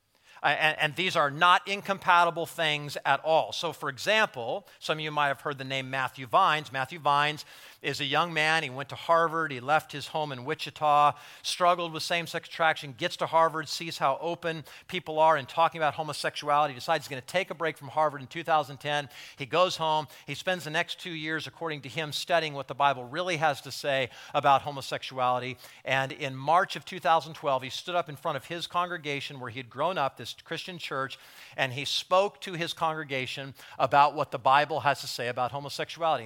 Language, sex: English, male